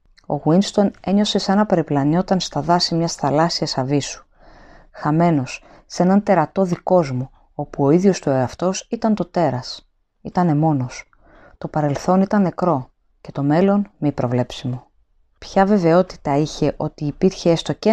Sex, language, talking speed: female, Greek, 140 wpm